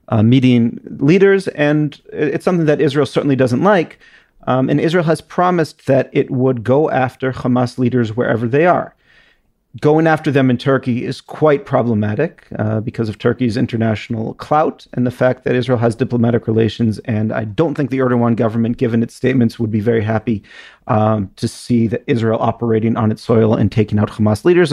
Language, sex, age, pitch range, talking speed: English, male, 40-59, 115-140 Hz, 185 wpm